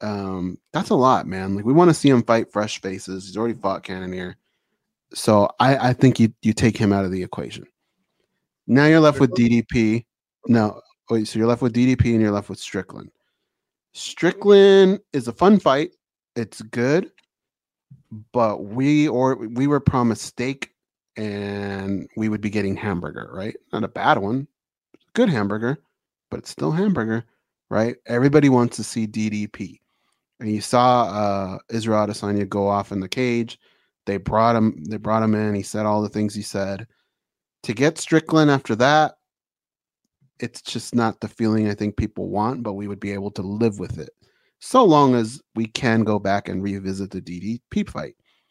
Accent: American